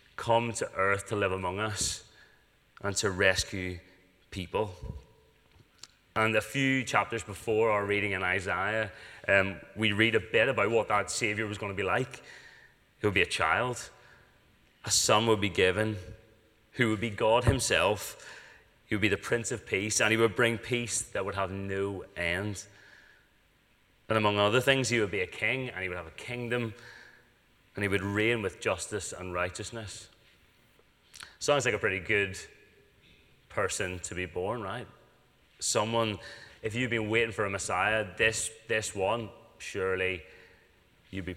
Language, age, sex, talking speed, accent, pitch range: English, 30-49, male, 165 wpm, British, 95-115 Hz